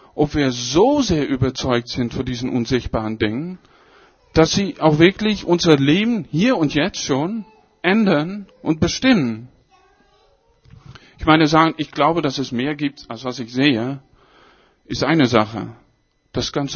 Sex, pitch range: male, 130-170 Hz